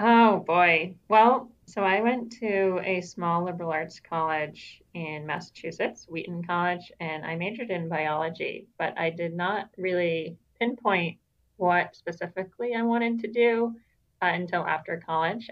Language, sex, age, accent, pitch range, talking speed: English, female, 30-49, American, 165-205 Hz, 145 wpm